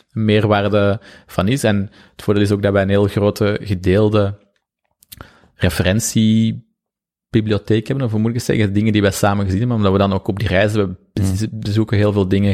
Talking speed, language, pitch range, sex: 180 wpm, Dutch, 100-110 Hz, male